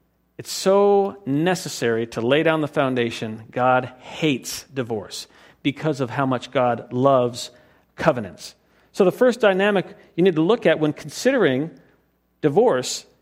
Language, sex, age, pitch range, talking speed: English, male, 50-69, 135-200 Hz, 135 wpm